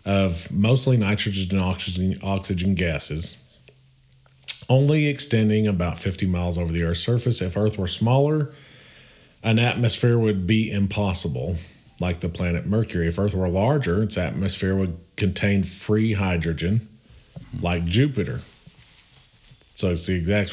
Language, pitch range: English, 90-115 Hz